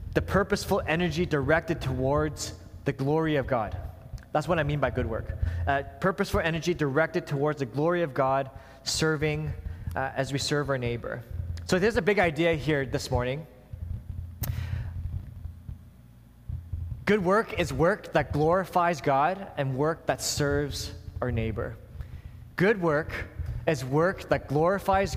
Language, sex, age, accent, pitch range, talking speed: English, male, 20-39, American, 115-175 Hz, 140 wpm